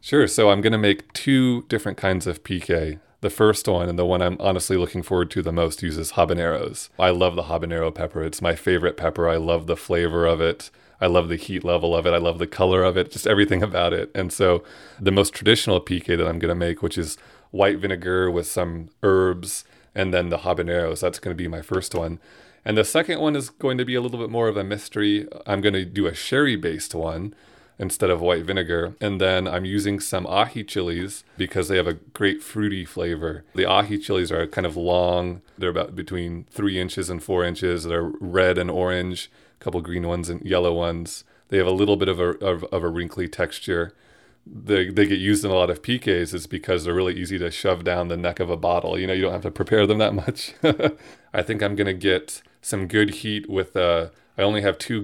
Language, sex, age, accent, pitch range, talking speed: English, male, 30-49, American, 85-100 Hz, 230 wpm